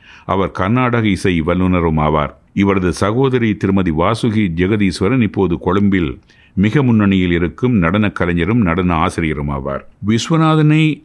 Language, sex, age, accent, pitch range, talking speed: Tamil, male, 50-69, native, 85-115 Hz, 110 wpm